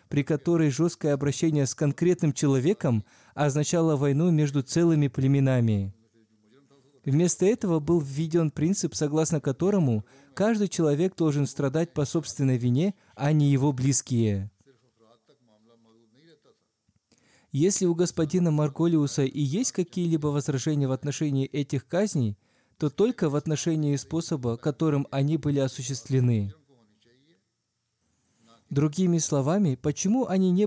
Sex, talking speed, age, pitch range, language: male, 110 wpm, 20-39, 135-165 Hz, Russian